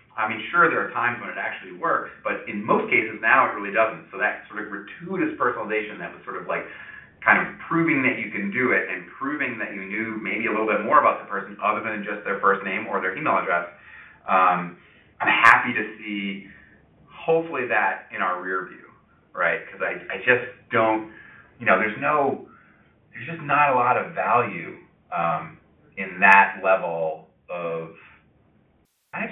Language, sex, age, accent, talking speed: English, male, 30-49, American, 195 wpm